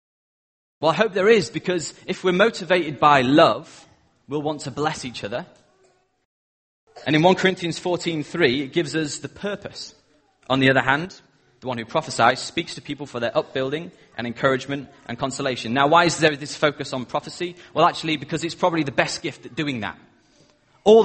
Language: English